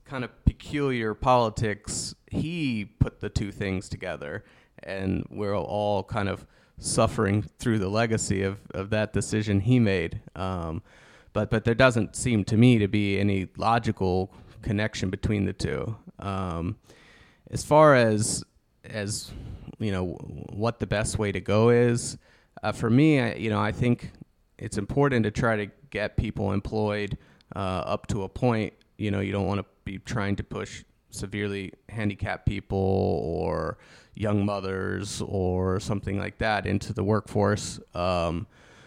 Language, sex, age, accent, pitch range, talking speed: Finnish, male, 30-49, American, 95-110 Hz, 155 wpm